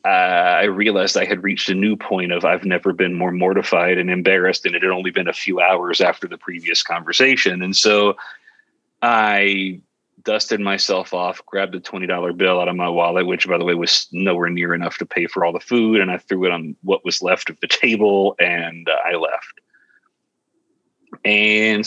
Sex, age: male, 30-49